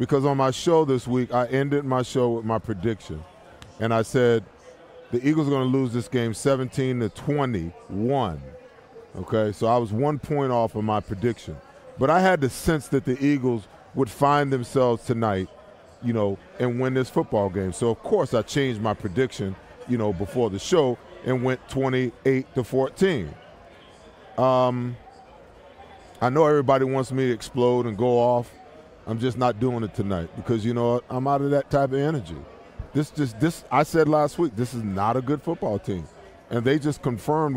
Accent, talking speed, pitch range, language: American, 185 wpm, 115-140 Hz, English